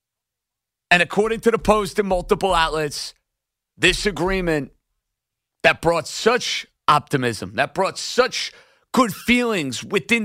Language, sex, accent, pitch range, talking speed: English, male, American, 150-210 Hz, 115 wpm